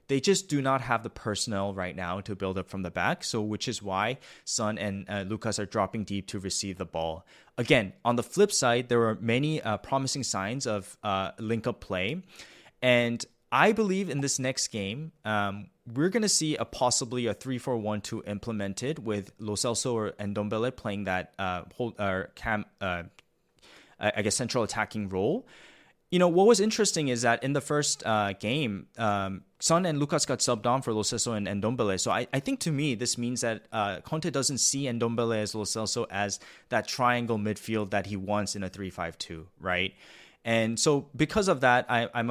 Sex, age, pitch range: male, 20-39, 100-135 Hz